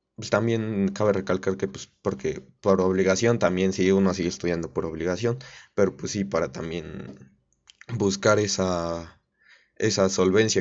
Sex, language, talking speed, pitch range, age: male, Spanish, 140 wpm, 95-105 Hz, 20-39